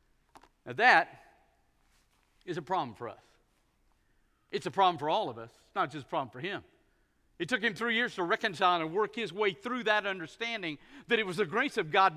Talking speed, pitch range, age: 205 wpm, 215-295 Hz, 50-69